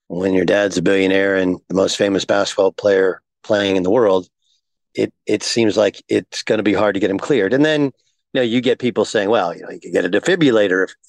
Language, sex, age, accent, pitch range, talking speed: English, male, 40-59, American, 110-130 Hz, 240 wpm